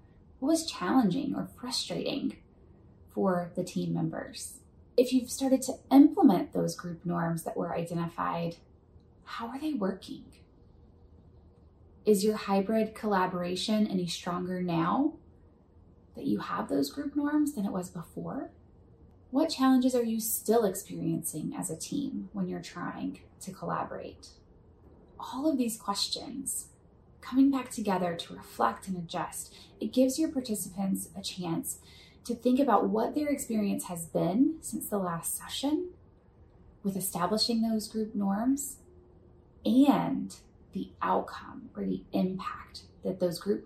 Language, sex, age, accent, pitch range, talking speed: English, female, 20-39, American, 165-245 Hz, 135 wpm